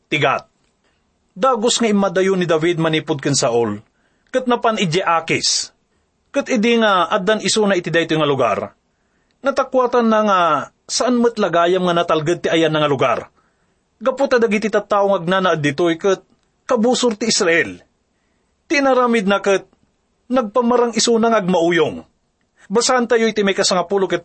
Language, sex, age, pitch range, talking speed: English, male, 30-49, 165-235 Hz, 140 wpm